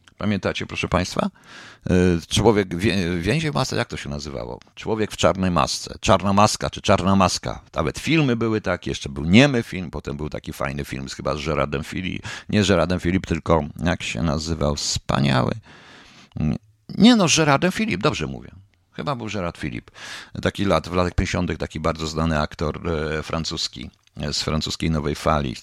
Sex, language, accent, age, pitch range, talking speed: male, Polish, native, 50-69, 80-110 Hz, 170 wpm